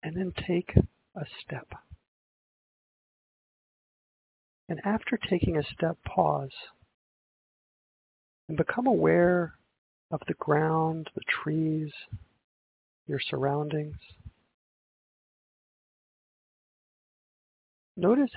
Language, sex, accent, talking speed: English, male, American, 70 wpm